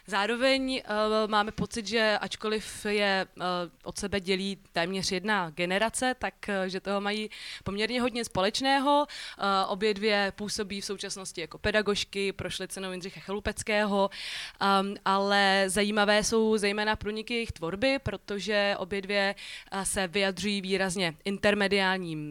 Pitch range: 190-215 Hz